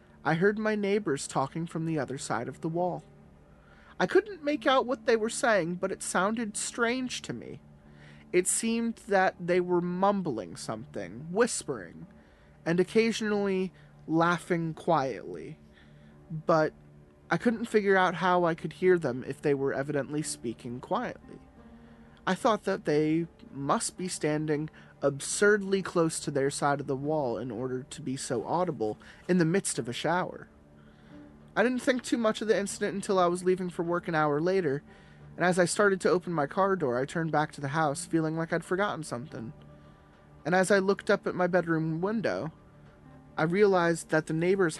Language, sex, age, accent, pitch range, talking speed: English, male, 30-49, American, 135-185 Hz, 175 wpm